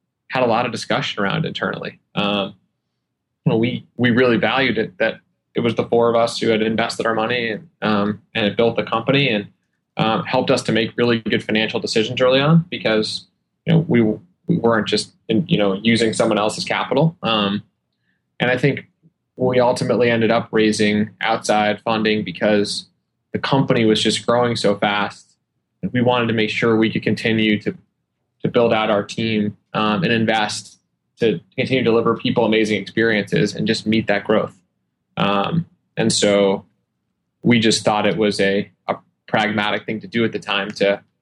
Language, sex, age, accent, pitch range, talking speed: English, male, 10-29, American, 105-120 Hz, 180 wpm